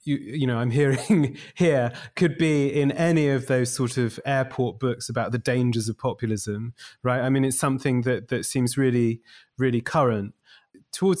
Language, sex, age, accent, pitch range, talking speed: English, male, 30-49, British, 115-135 Hz, 175 wpm